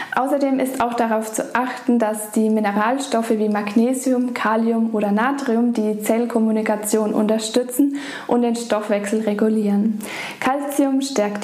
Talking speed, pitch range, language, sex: 120 wpm, 210-255 Hz, German, female